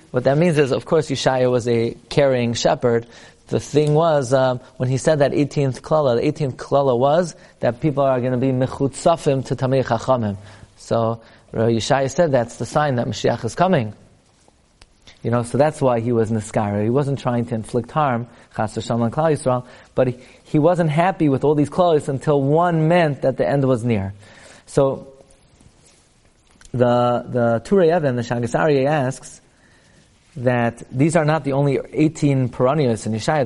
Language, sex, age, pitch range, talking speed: English, male, 30-49, 115-150 Hz, 175 wpm